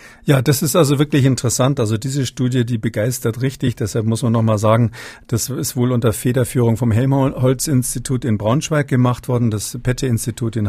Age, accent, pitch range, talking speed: 50-69, German, 115-135 Hz, 180 wpm